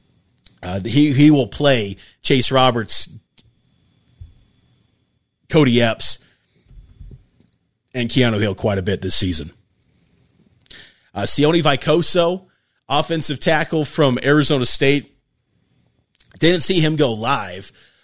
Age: 30-49